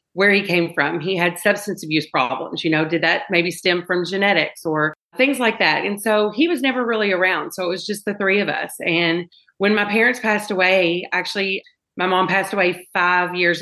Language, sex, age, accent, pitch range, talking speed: English, female, 40-59, American, 165-205 Hz, 215 wpm